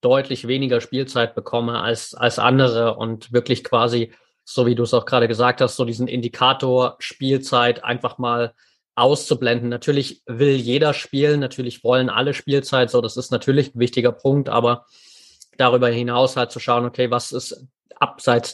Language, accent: German, German